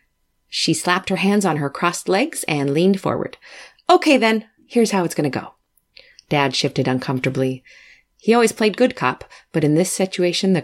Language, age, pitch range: English, 30-49, 145-200 Hz